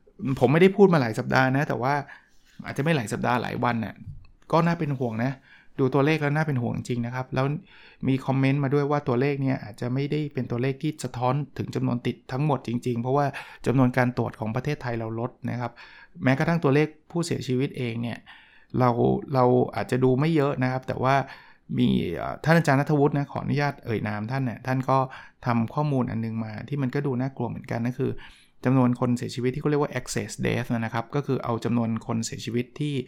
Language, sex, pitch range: Thai, male, 120-145 Hz